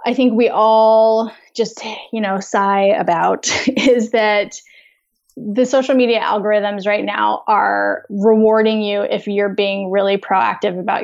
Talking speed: 140 wpm